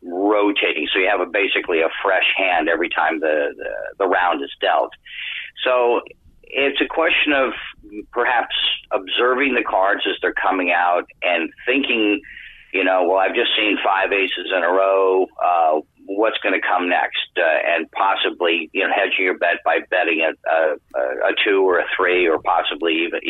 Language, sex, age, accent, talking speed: English, male, 50-69, American, 180 wpm